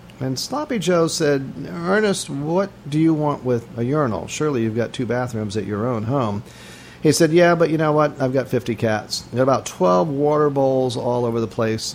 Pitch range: 115-150 Hz